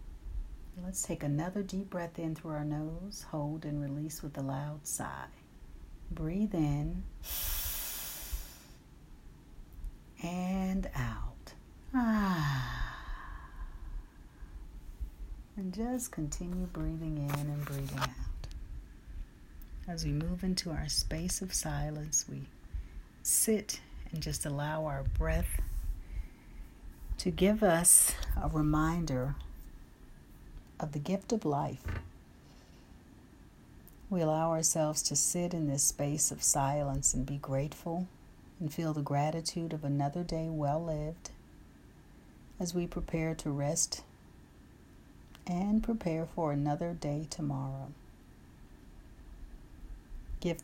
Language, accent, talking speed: English, American, 105 wpm